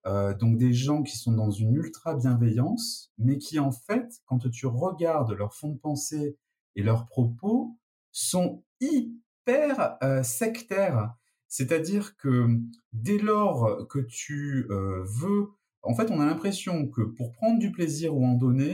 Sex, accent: male, French